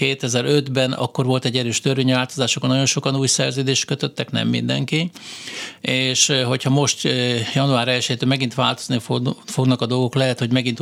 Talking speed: 150 wpm